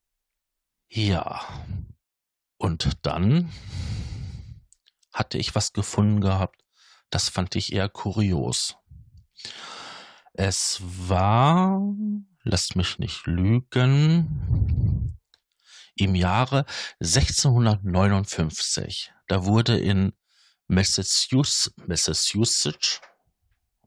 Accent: German